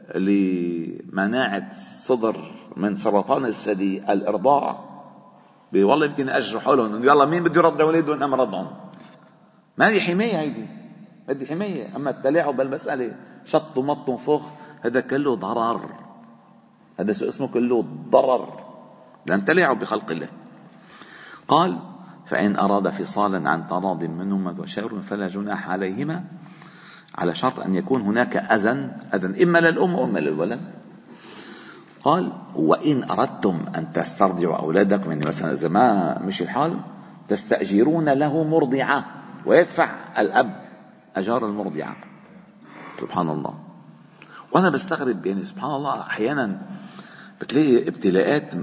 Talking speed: 110 wpm